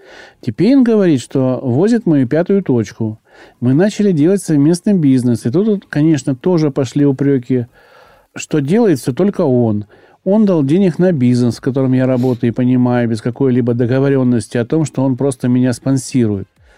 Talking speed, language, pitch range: 155 wpm, Russian, 130-175 Hz